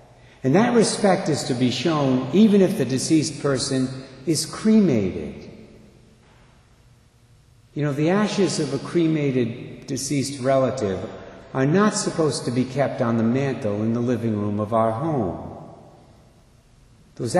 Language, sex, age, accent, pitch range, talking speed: English, male, 50-69, American, 110-135 Hz, 140 wpm